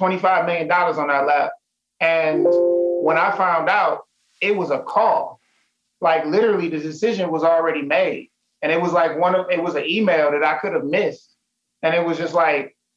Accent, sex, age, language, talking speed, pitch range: American, male, 30-49, English, 185 wpm, 155-185 Hz